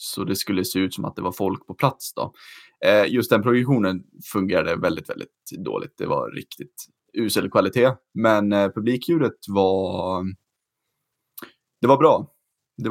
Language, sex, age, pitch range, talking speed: Swedish, male, 20-39, 95-120 Hz, 160 wpm